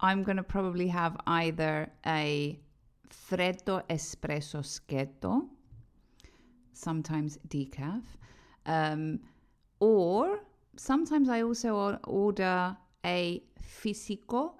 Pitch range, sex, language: 165-215 Hz, female, Greek